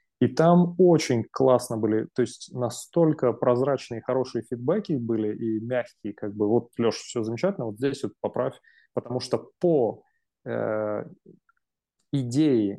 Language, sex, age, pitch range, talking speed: English, male, 20-39, 115-145 Hz, 135 wpm